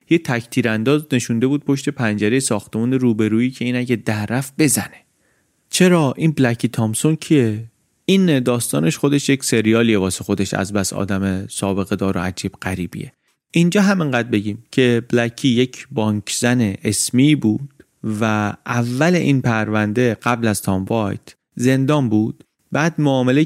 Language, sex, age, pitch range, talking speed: Persian, male, 30-49, 110-150 Hz, 140 wpm